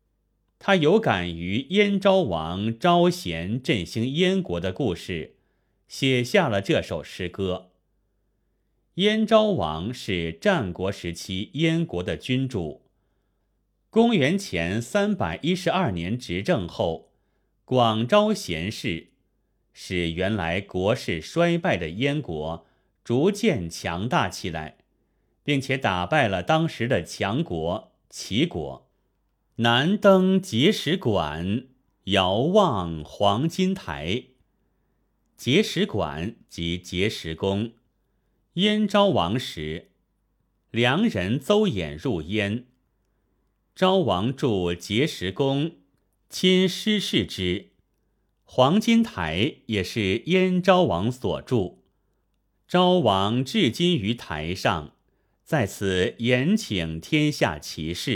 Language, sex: Chinese, male